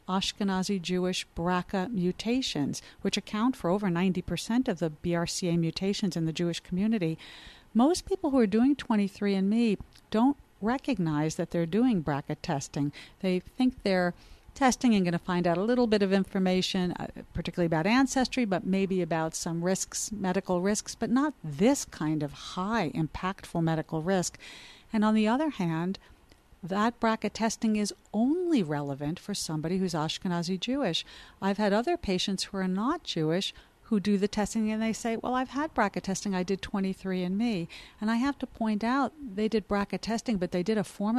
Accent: American